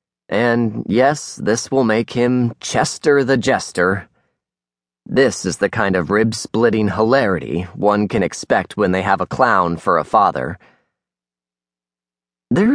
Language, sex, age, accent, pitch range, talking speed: English, male, 30-49, American, 85-125 Hz, 130 wpm